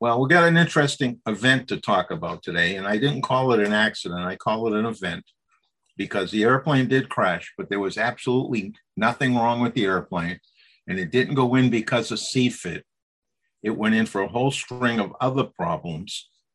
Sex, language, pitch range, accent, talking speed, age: male, English, 105-130 Hz, American, 200 wpm, 50-69